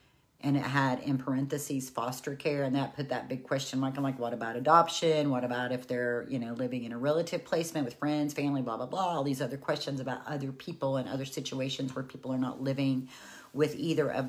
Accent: American